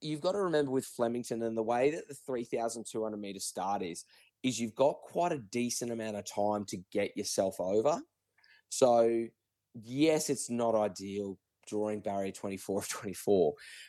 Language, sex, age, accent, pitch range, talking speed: English, male, 20-39, Australian, 105-125 Hz, 185 wpm